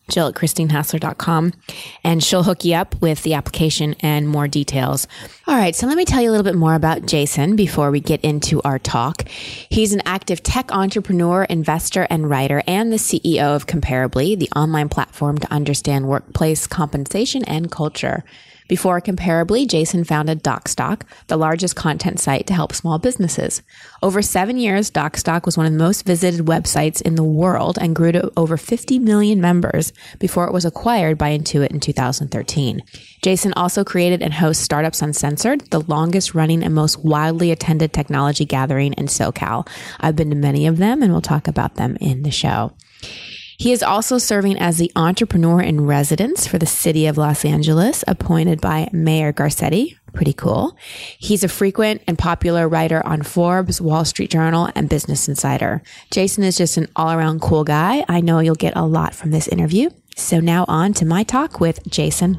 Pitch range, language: 150-185 Hz, English